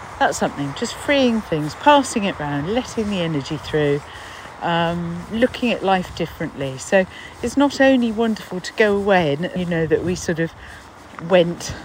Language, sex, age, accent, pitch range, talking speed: English, female, 50-69, British, 165-220 Hz, 165 wpm